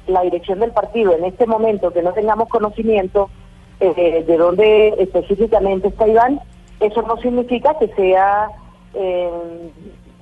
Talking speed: 135 wpm